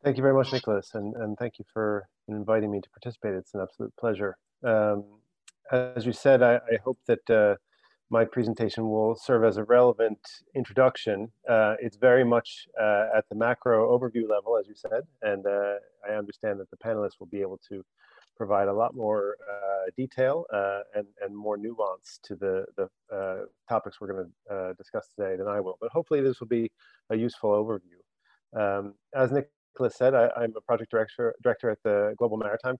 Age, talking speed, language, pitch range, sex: 40-59, 190 wpm, English, 105-125 Hz, male